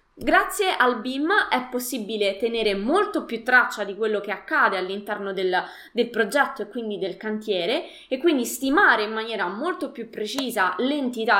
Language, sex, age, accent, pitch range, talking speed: Italian, female, 20-39, native, 215-310 Hz, 160 wpm